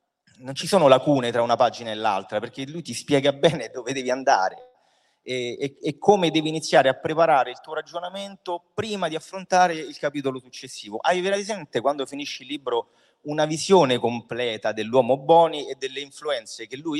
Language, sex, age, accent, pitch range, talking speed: Italian, male, 30-49, native, 110-165 Hz, 175 wpm